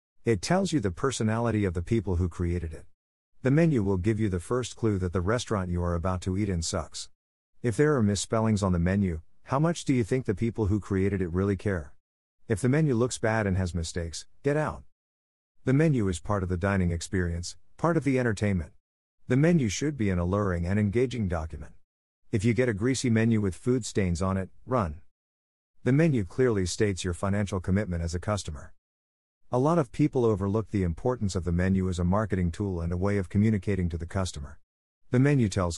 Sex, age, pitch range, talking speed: male, 50-69, 85-115 Hz, 210 wpm